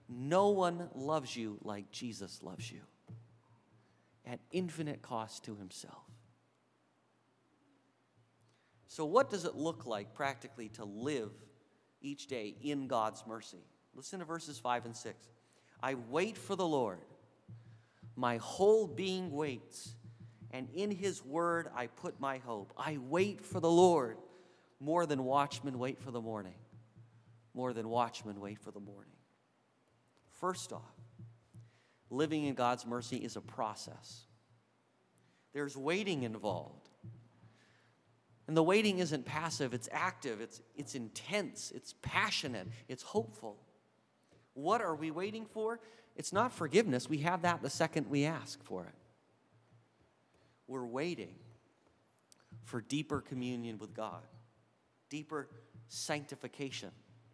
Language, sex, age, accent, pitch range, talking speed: English, male, 40-59, American, 115-150 Hz, 125 wpm